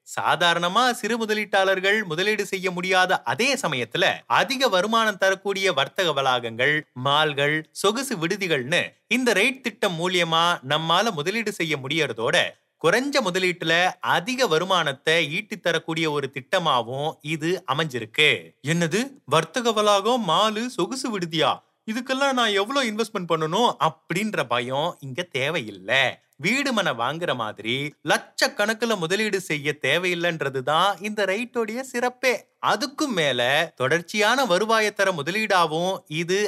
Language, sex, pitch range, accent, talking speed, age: Tamil, male, 155-215 Hz, native, 80 wpm, 30-49